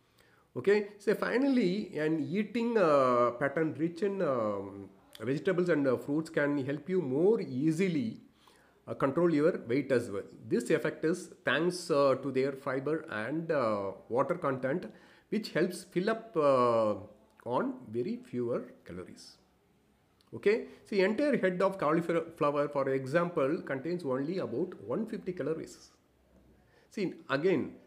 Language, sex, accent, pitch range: English, male, Indian, 130-180 Hz